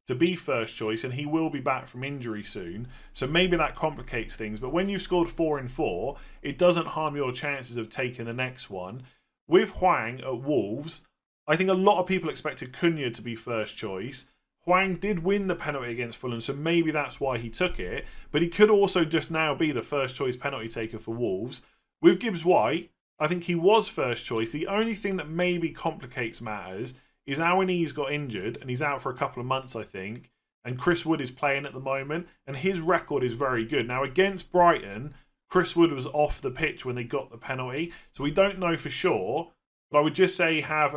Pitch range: 125-170 Hz